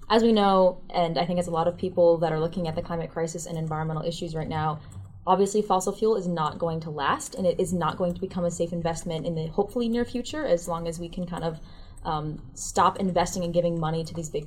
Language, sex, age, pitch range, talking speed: English, female, 20-39, 165-185 Hz, 255 wpm